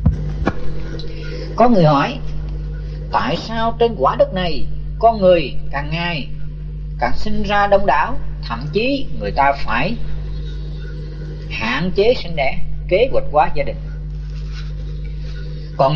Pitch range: 150-180 Hz